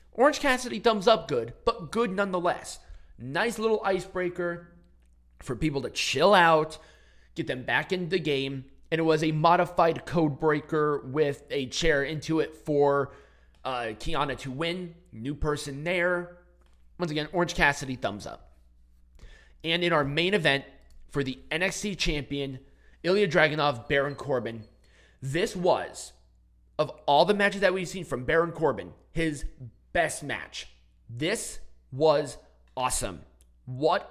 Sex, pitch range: male, 130-180 Hz